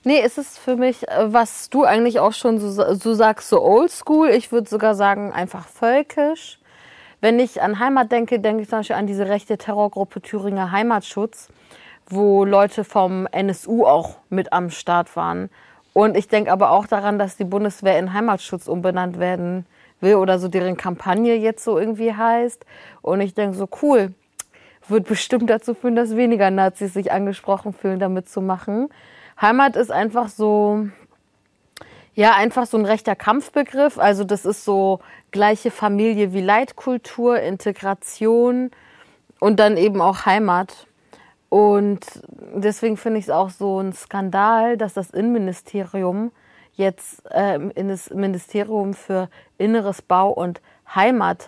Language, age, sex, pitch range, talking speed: German, 30-49, female, 195-230 Hz, 155 wpm